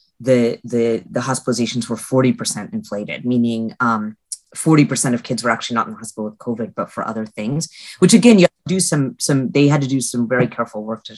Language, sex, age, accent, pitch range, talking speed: English, female, 30-49, American, 120-155 Hz, 220 wpm